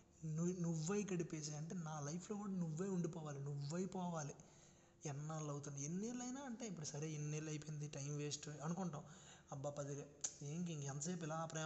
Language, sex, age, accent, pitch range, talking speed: Telugu, male, 20-39, native, 150-190 Hz, 140 wpm